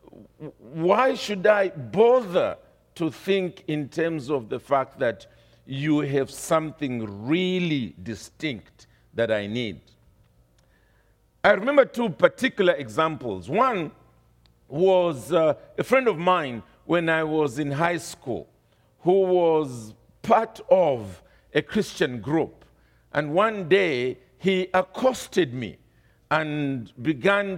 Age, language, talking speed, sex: 50-69, English, 115 wpm, male